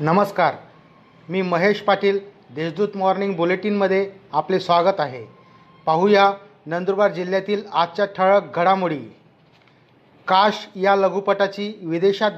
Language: Marathi